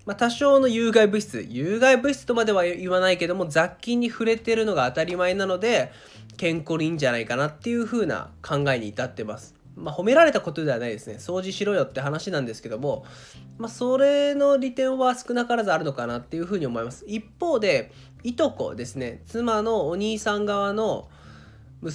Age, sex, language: 20-39, male, Japanese